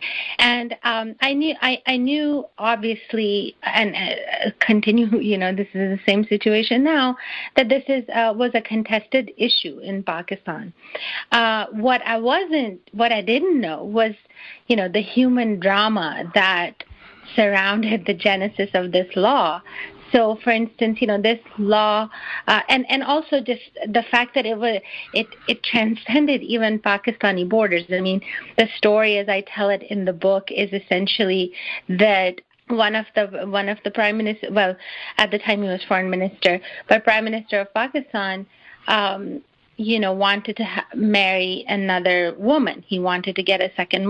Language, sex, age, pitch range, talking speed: English, female, 30-49, 200-235 Hz, 165 wpm